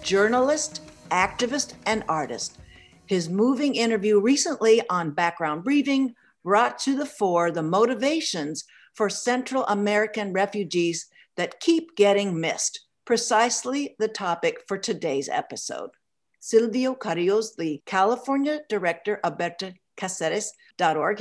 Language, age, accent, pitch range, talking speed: English, 60-79, American, 170-250 Hz, 110 wpm